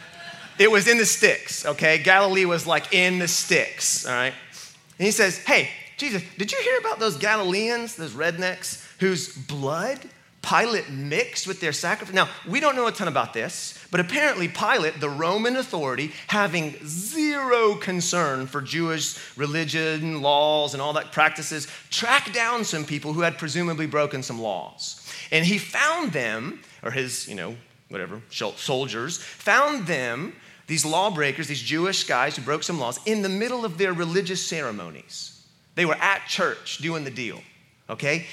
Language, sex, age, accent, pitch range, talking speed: English, male, 30-49, American, 145-195 Hz, 165 wpm